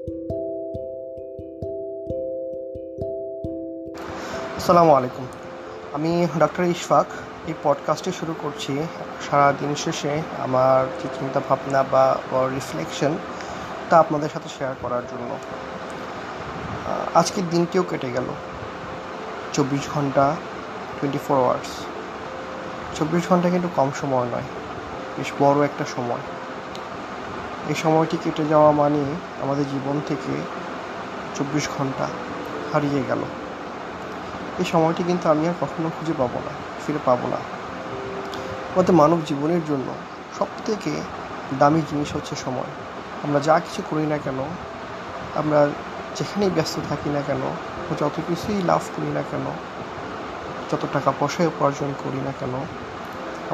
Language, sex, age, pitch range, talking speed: Bengali, male, 30-49, 130-160 Hz, 60 wpm